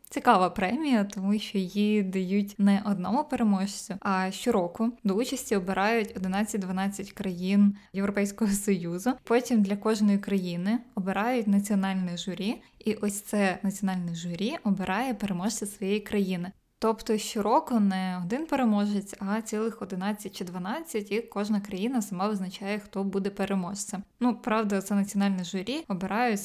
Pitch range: 190-220 Hz